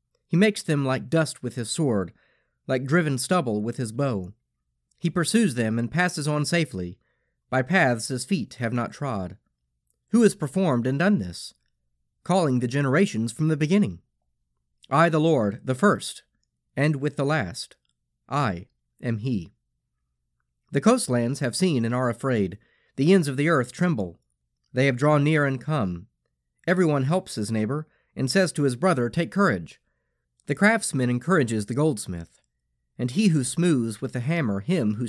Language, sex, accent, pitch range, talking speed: English, male, American, 100-165 Hz, 165 wpm